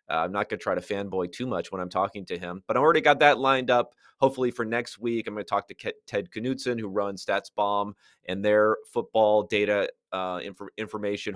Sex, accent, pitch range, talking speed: male, American, 110-140 Hz, 220 wpm